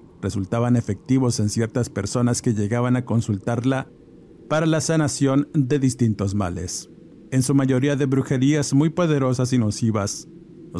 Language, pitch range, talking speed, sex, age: Spanish, 105-140 Hz, 140 wpm, male, 50-69